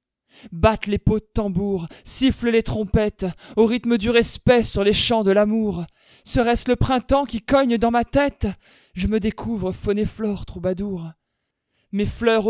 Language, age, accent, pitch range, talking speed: French, 20-39, French, 195-235 Hz, 165 wpm